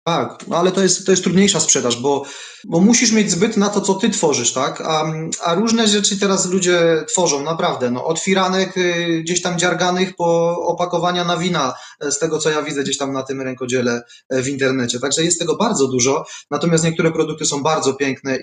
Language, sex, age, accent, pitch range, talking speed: Polish, male, 20-39, native, 140-170 Hz, 195 wpm